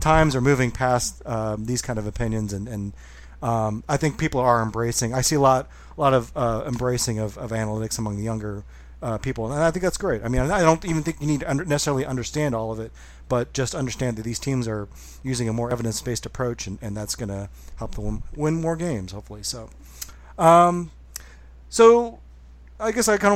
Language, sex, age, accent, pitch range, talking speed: English, male, 40-59, American, 115-145 Hz, 215 wpm